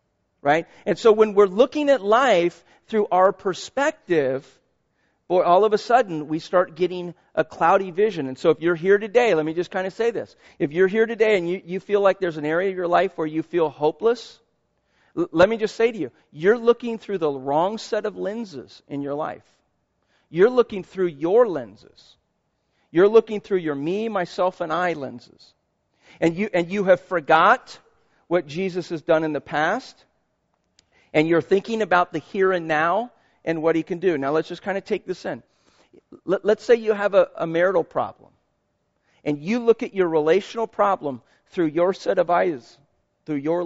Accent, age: American, 40-59